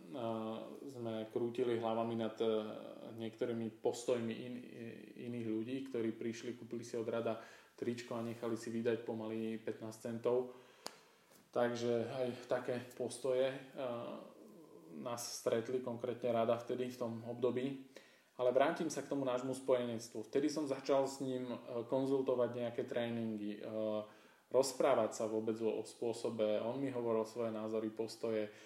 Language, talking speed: Slovak, 135 wpm